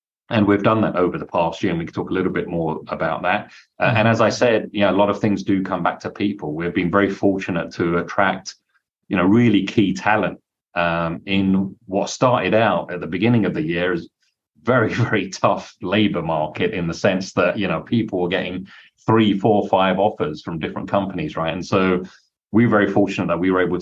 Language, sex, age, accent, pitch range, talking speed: English, male, 30-49, British, 85-100 Hz, 220 wpm